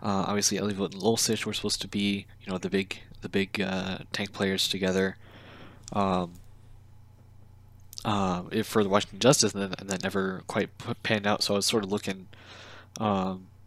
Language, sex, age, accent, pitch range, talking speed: English, male, 20-39, American, 100-110 Hz, 180 wpm